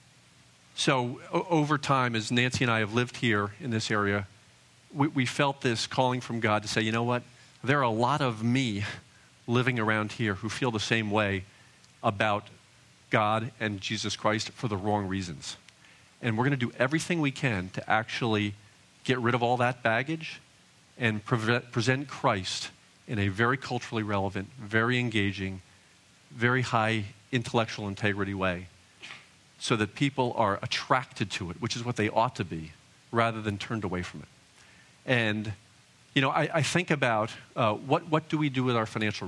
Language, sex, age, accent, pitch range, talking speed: English, male, 40-59, American, 105-130 Hz, 175 wpm